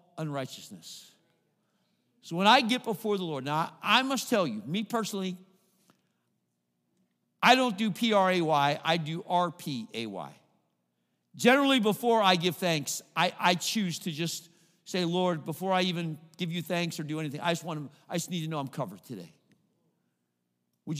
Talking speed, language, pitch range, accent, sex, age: 160 wpm, English, 150-210 Hz, American, male, 50-69